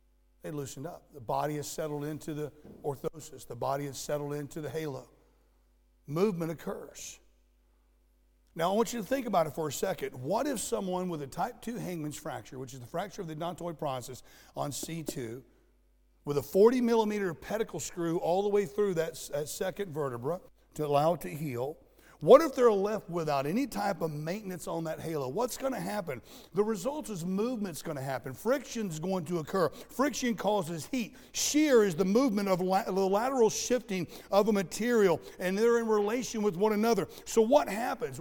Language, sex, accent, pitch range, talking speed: English, male, American, 150-225 Hz, 185 wpm